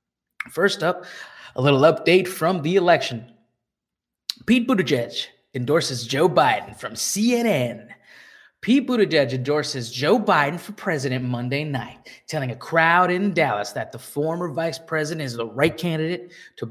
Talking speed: 140 wpm